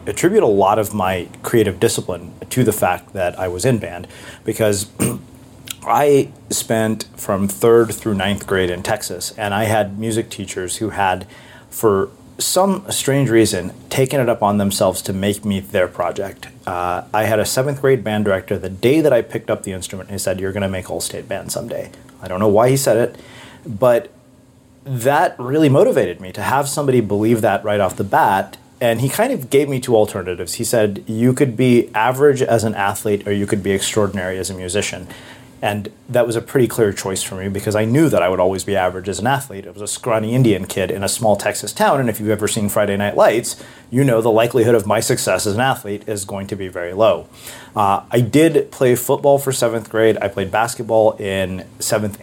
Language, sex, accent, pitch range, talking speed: English, male, American, 100-120 Hz, 215 wpm